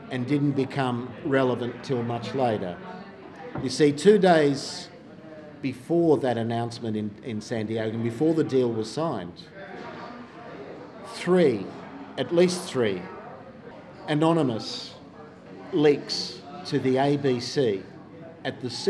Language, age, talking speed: English, 50-69, 110 wpm